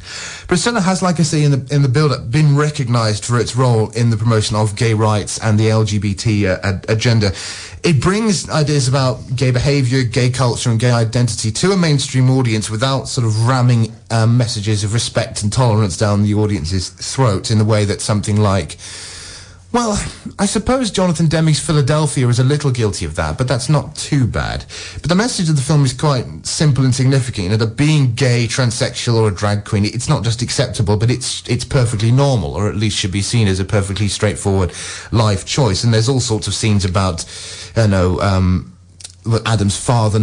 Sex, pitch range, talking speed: male, 100-130 Hz, 200 wpm